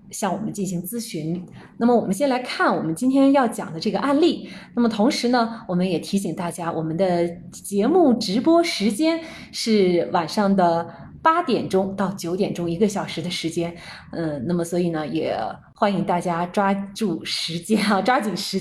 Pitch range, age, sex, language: 175-240 Hz, 20-39, female, Chinese